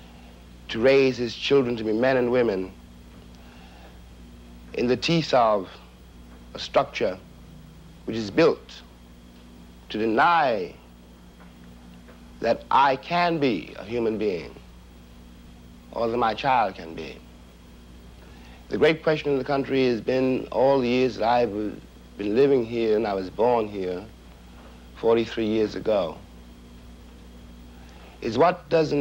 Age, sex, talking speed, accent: 60-79, male, 125 wpm, American